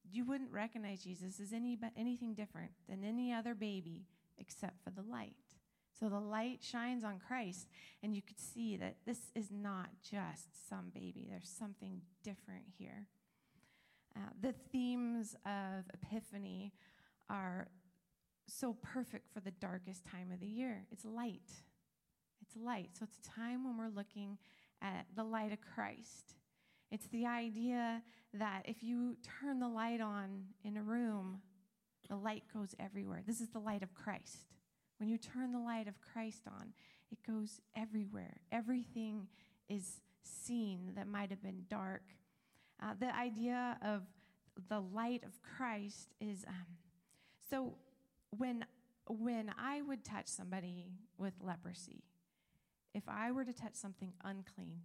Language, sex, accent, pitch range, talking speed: English, female, American, 195-230 Hz, 150 wpm